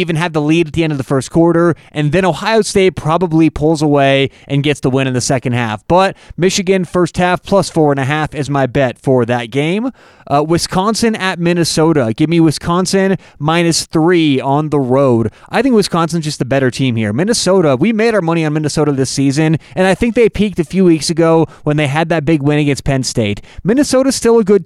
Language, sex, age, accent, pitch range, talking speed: English, male, 30-49, American, 140-180 Hz, 225 wpm